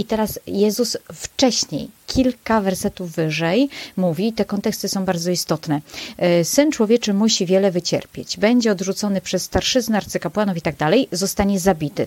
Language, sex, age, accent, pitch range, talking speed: Polish, female, 30-49, native, 170-205 Hz, 140 wpm